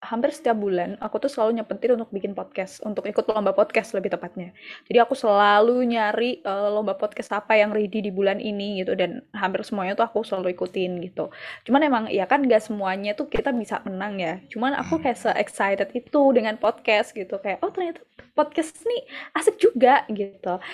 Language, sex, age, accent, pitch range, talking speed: Indonesian, female, 10-29, native, 210-285 Hz, 190 wpm